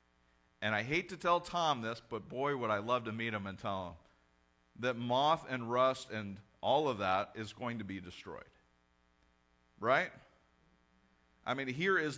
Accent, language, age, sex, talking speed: American, English, 50-69, male, 175 wpm